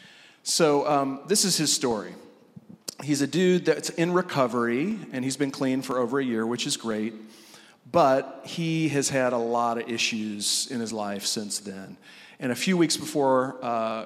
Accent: American